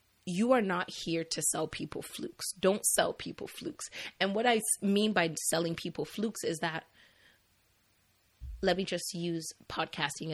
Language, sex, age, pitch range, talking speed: English, female, 30-49, 160-185 Hz, 155 wpm